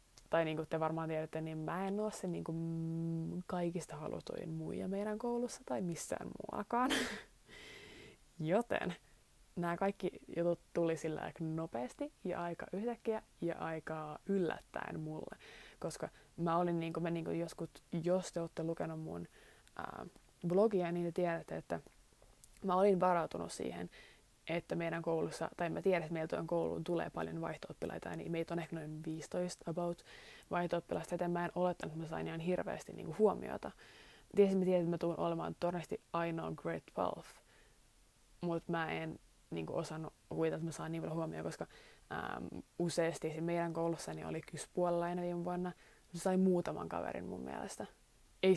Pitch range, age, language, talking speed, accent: 160-180 Hz, 20-39, Finnish, 165 wpm, native